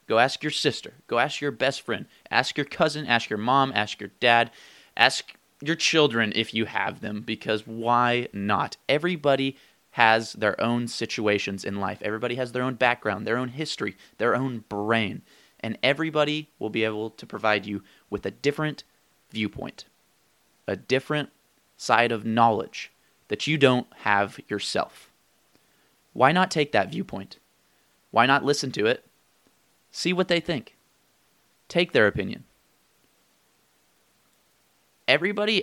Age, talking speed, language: 20-39, 145 wpm, English